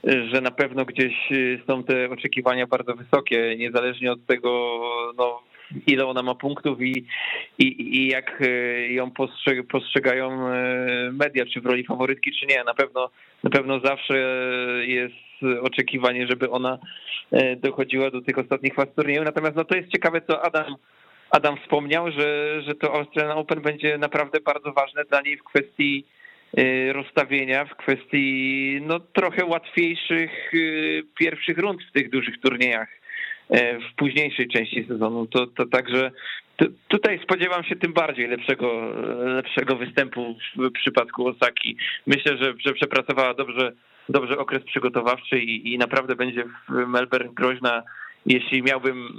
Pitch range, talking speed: 125-150 Hz, 140 wpm